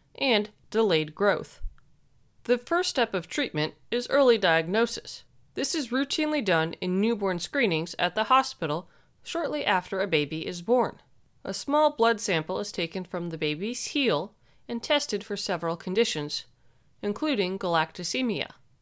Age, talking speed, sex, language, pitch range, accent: 30-49, 140 wpm, female, English, 175-245 Hz, American